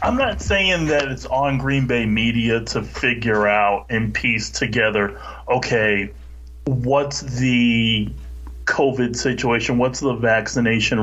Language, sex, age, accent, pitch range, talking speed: English, male, 30-49, American, 100-130 Hz, 125 wpm